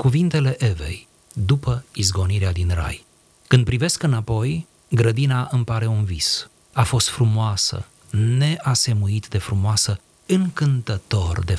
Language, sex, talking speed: Romanian, male, 115 wpm